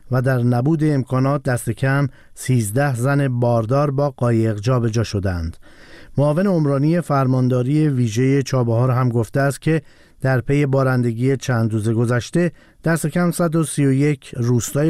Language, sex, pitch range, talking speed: Persian, male, 120-145 Hz, 130 wpm